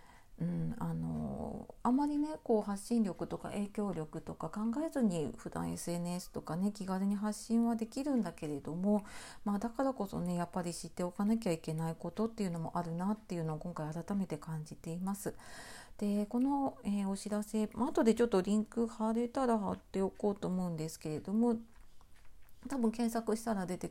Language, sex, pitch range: Japanese, female, 170-225 Hz